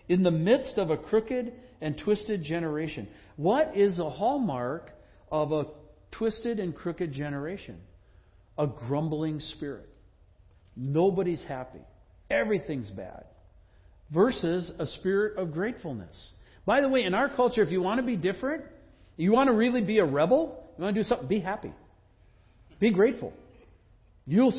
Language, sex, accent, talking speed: English, male, American, 145 wpm